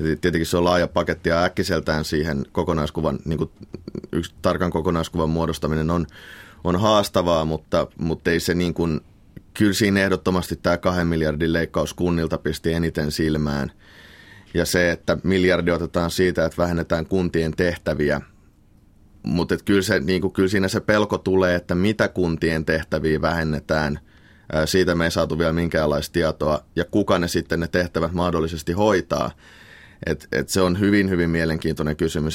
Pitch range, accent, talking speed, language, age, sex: 80-90 Hz, native, 155 wpm, Finnish, 30-49, male